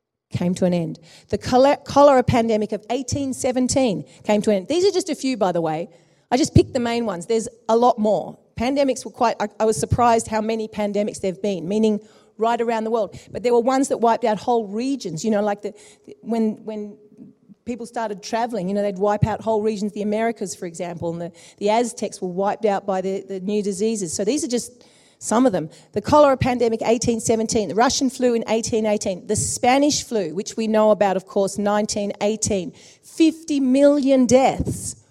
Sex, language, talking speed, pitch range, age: female, English, 205 wpm, 205-255 Hz, 40-59